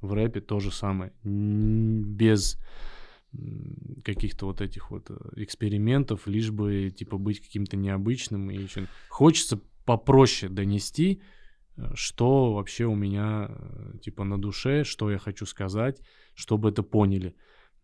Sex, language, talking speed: male, Russian, 120 wpm